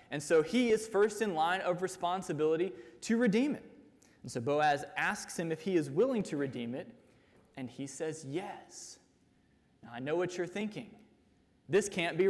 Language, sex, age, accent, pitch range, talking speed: English, male, 20-39, American, 150-220 Hz, 180 wpm